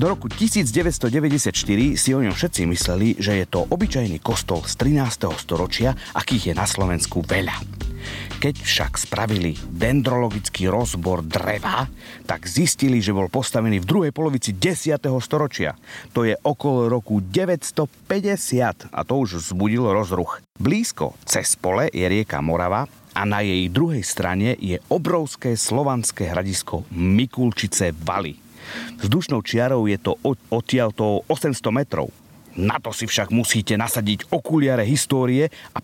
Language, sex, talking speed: Slovak, male, 135 wpm